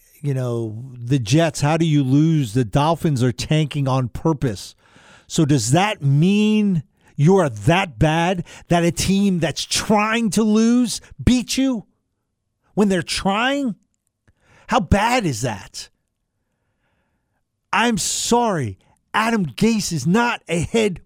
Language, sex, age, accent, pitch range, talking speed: English, male, 50-69, American, 130-220 Hz, 130 wpm